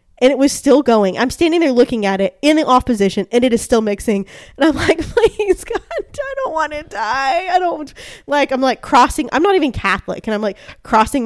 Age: 20-39